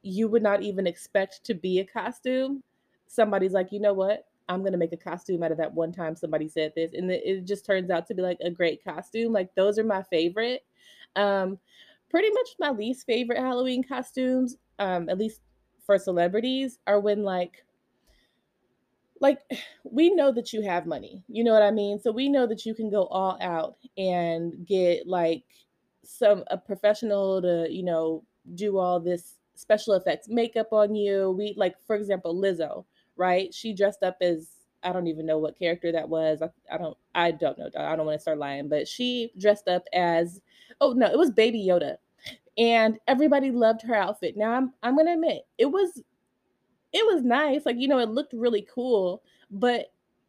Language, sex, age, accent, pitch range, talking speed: English, female, 20-39, American, 180-230 Hz, 195 wpm